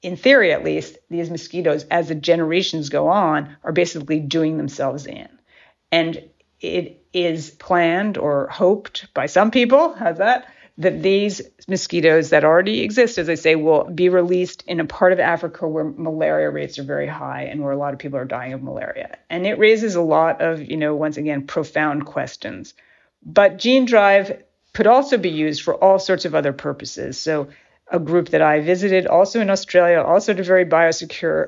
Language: English